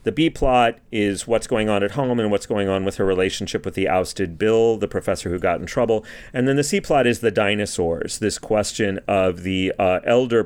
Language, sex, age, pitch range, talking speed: English, male, 40-59, 95-130 Hz, 220 wpm